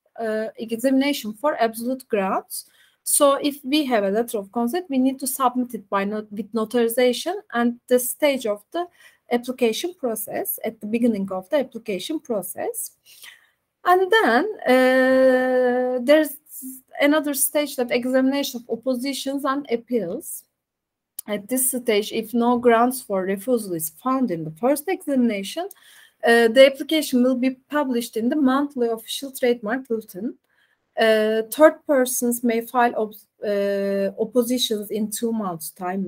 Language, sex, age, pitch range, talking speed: Turkish, female, 30-49, 220-280 Hz, 145 wpm